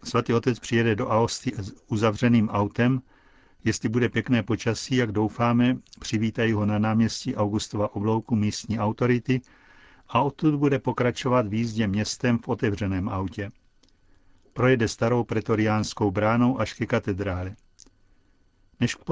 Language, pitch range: Czech, 105-120 Hz